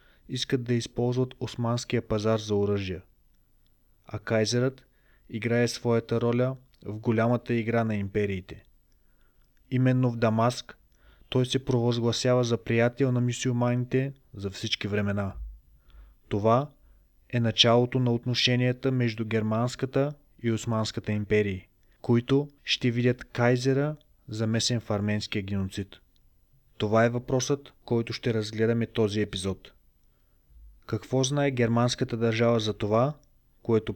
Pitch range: 105-125 Hz